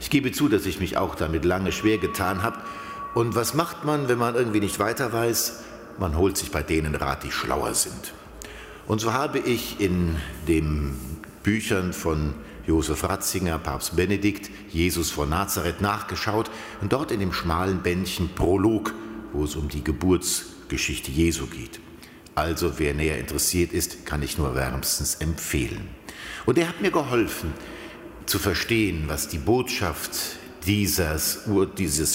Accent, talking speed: German, 155 wpm